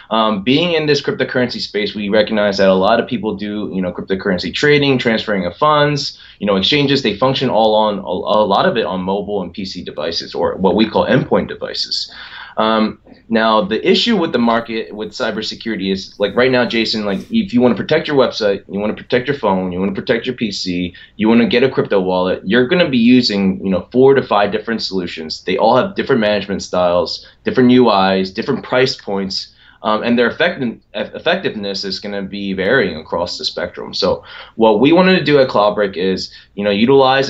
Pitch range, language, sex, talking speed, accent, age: 95-125 Hz, English, male, 215 wpm, American, 20-39